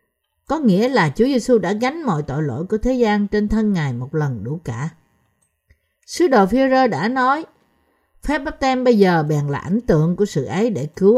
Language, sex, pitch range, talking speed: Vietnamese, female, 160-230 Hz, 210 wpm